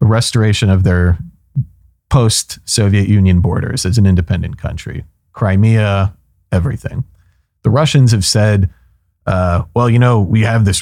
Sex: male